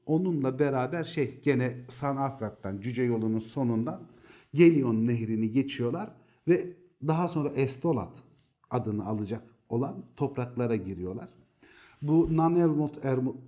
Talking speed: 105 wpm